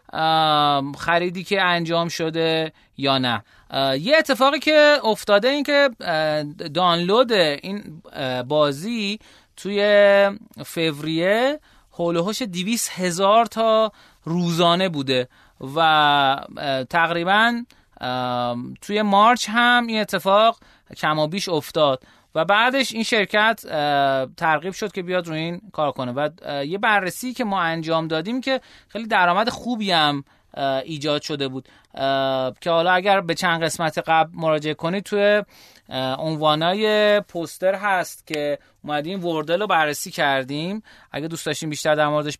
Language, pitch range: Persian, 150-210 Hz